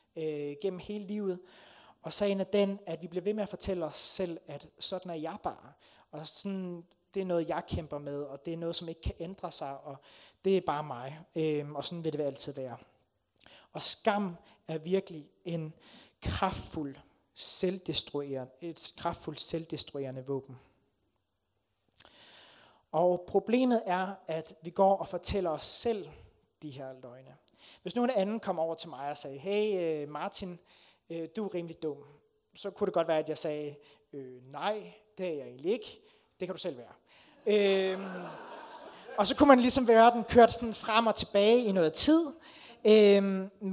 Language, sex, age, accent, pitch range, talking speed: Danish, male, 30-49, native, 150-200 Hz, 180 wpm